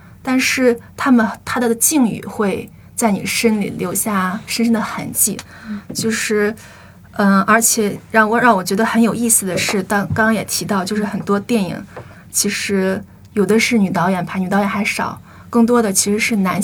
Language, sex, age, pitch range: Chinese, female, 20-39, 195-230 Hz